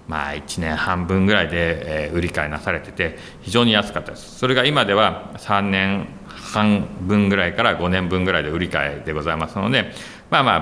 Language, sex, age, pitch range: Japanese, male, 40-59, 85-110 Hz